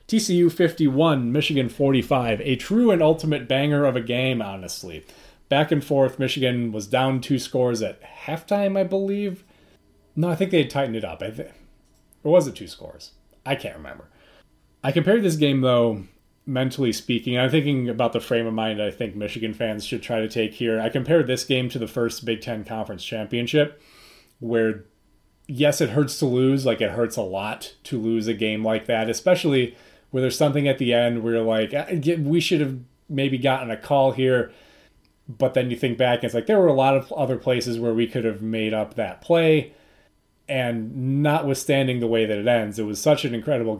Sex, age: male, 30-49